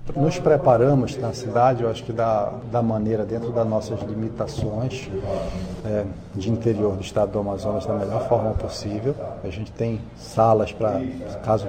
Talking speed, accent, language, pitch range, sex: 155 wpm, Brazilian, Portuguese, 105-125 Hz, male